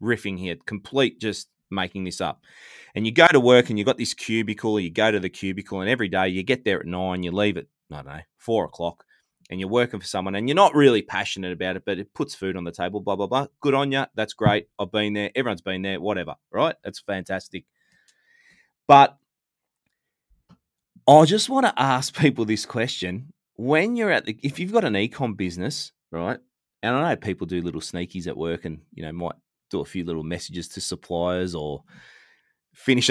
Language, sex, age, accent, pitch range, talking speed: English, male, 20-39, Australian, 95-130 Hz, 210 wpm